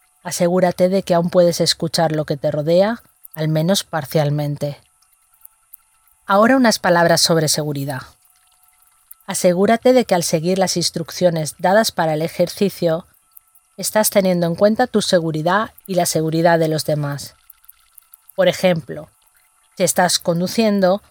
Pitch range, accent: 155-195 Hz, Spanish